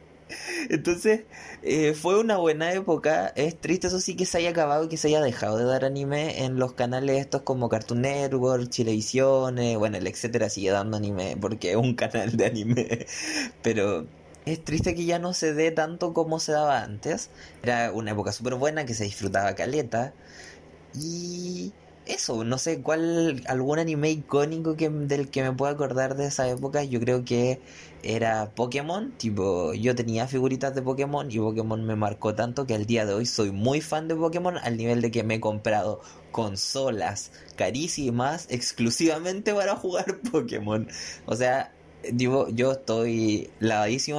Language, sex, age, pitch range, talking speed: Spanish, male, 20-39, 110-150 Hz, 170 wpm